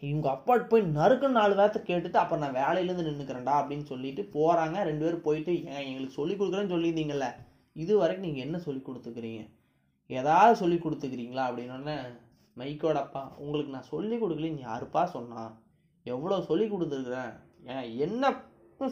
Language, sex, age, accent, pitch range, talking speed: Tamil, male, 20-39, native, 130-180 Hz, 135 wpm